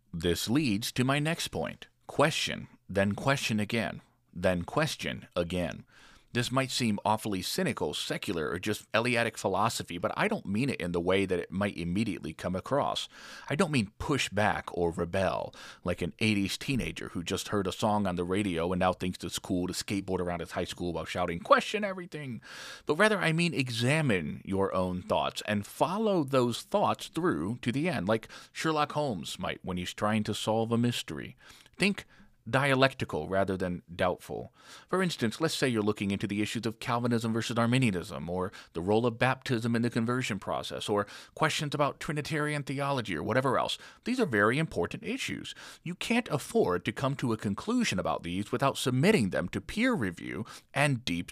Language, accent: English, American